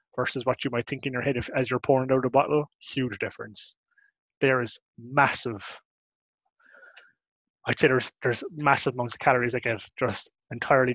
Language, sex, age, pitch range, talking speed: English, male, 20-39, 115-135 Hz, 175 wpm